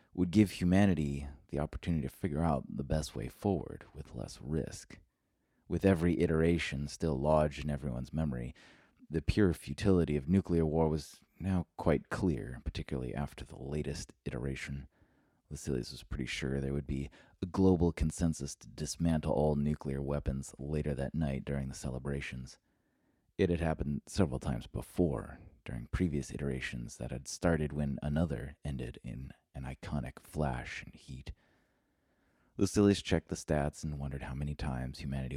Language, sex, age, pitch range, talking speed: English, male, 30-49, 70-85 Hz, 150 wpm